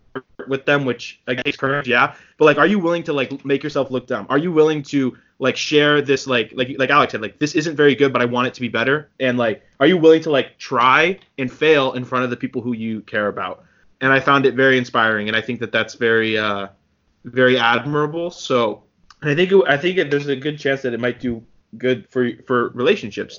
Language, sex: English, male